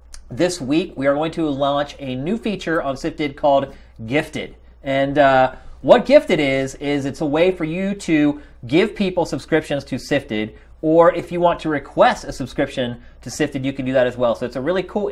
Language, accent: English, American